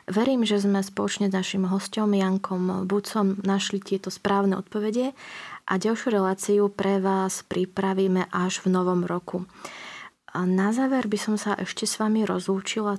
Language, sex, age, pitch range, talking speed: Slovak, female, 20-39, 190-205 Hz, 150 wpm